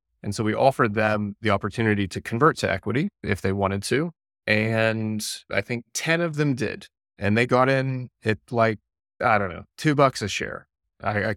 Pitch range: 95-115 Hz